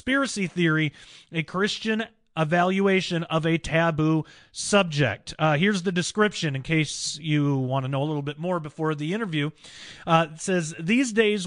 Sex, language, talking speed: male, English, 160 wpm